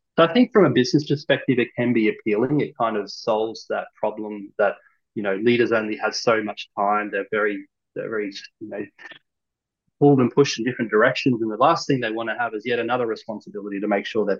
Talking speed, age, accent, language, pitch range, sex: 225 wpm, 20-39, Australian, English, 105-135 Hz, male